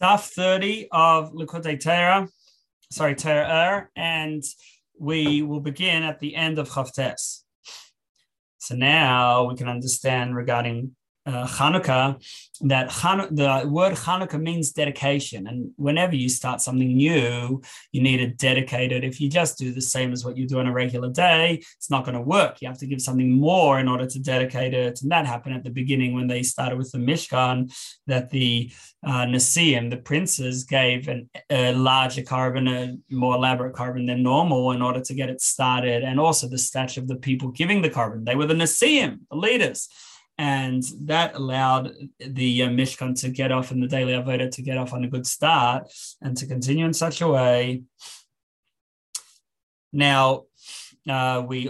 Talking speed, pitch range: 175 wpm, 125-150 Hz